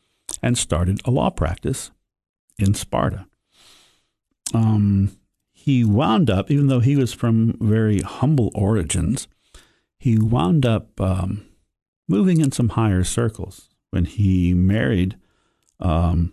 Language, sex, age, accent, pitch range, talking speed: English, male, 50-69, American, 95-115 Hz, 120 wpm